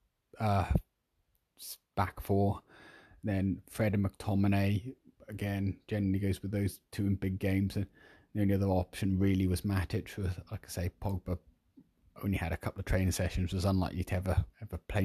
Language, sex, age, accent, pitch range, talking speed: English, male, 30-49, British, 90-100 Hz, 170 wpm